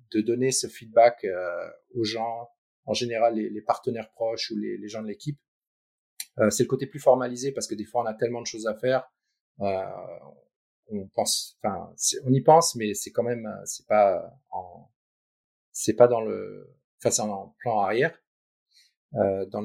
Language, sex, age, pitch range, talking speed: French, male, 40-59, 110-130 Hz, 185 wpm